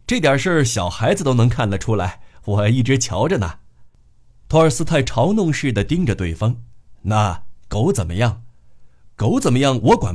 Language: Chinese